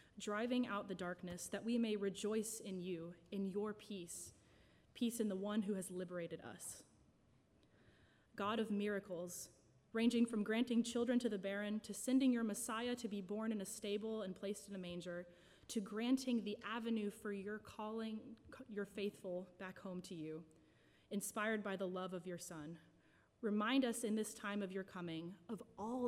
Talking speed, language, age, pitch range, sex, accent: 175 wpm, English, 20-39, 180-215 Hz, female, American